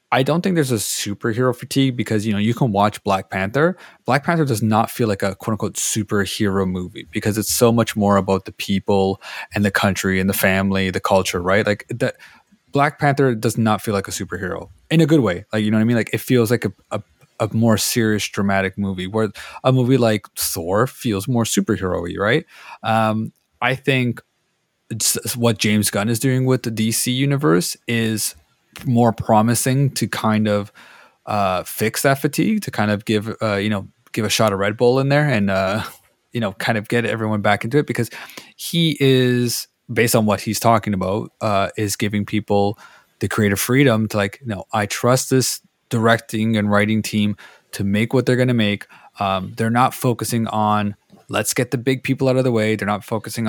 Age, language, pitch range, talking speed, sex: 20-39, English, 105-120 Hz, 205 wpm, male